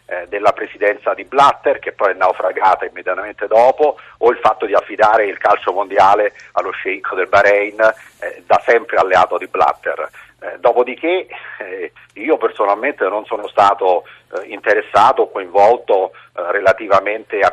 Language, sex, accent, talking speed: Italian, male, native, 145 wpm